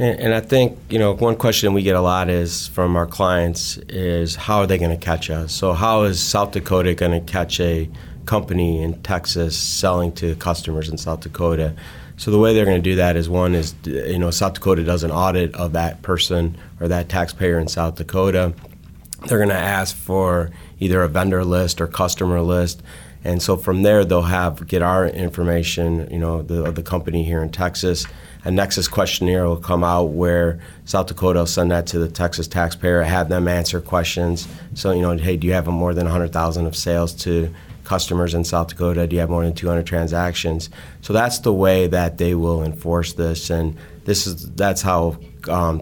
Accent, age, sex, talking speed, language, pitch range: American, 30-49, male, 200 wpm, English, 85-90 Hz